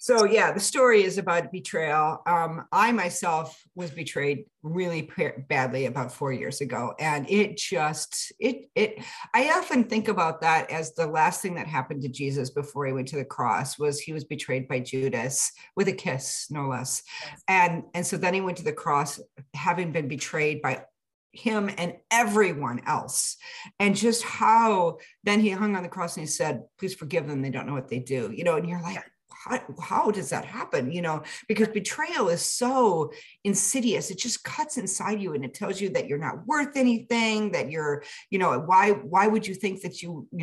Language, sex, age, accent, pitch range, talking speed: English, female, 50-69, American, 150-205 Hz, 200 wpm